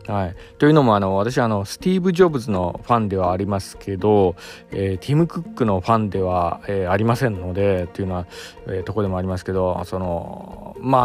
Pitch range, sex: 95-125 Hz, male